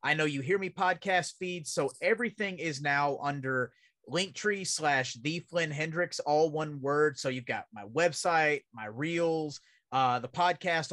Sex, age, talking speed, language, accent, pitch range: male, 30-49, 165 wpm, English, American, 135-165 Hz